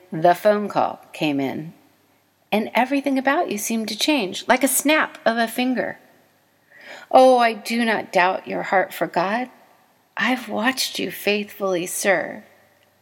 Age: 40-59